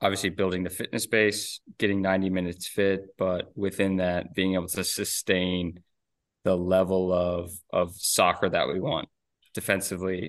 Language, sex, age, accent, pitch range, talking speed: English, male, 20-39, American, 90-105 Hz, 145 wpm